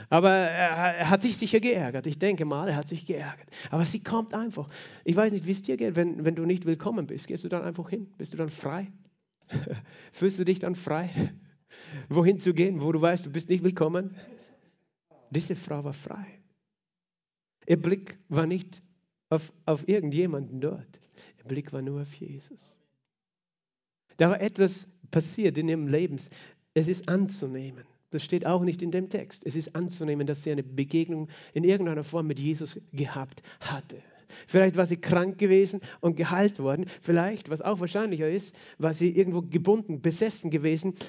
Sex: male